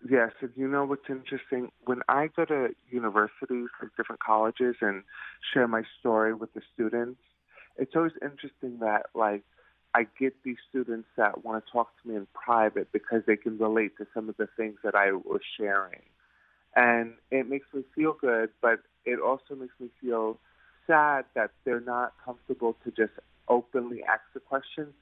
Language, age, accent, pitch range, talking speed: English, 30-49, American, 110-130 Hz, 180 wpm